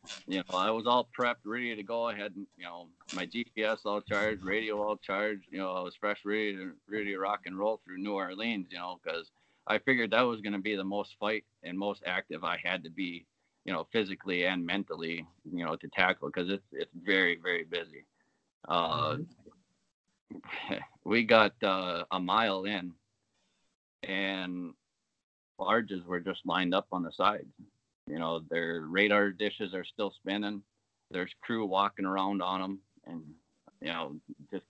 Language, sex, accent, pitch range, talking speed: English, male, American, 95-110 Hz, 180 wpm